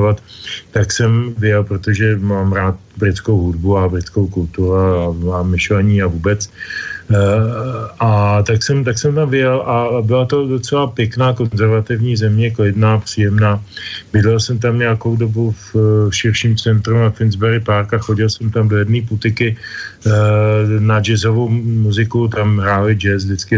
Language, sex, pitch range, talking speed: Slovak, male, 100-115 Hz, 150 wpm